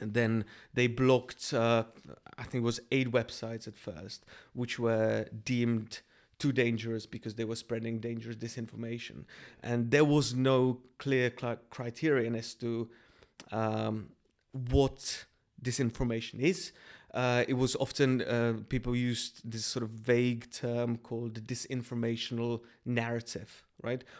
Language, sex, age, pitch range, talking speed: Czech, male, 30-49, 115-125 Hz, 130 wpm